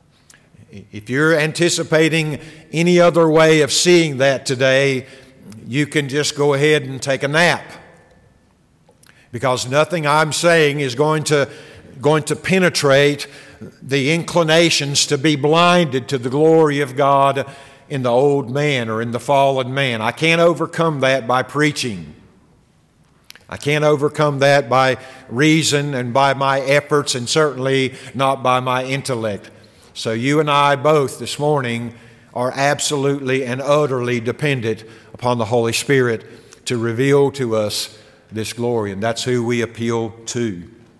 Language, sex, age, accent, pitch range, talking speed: English, male, 50-69, American, 120-150 Hz, 140 wpm